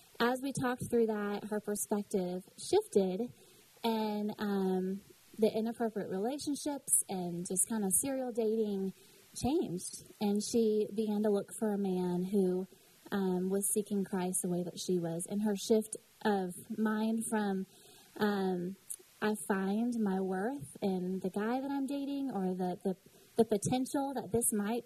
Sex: female